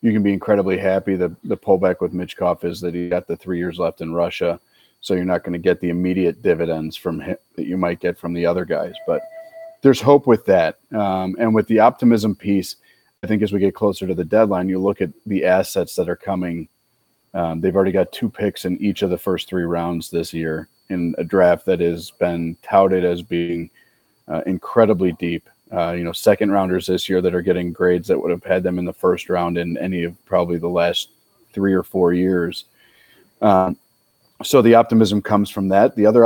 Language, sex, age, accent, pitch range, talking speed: English, male, 30-49, American, 85-105 Hz, 220 wpm